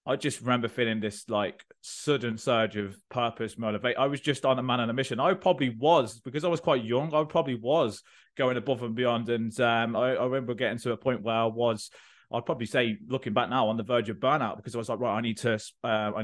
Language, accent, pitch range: English, British, 115-130 Hz